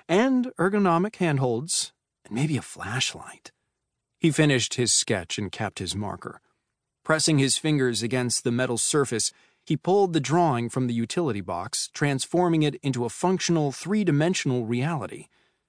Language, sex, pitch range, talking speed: English, male, 115-155 Hz, 140 wpm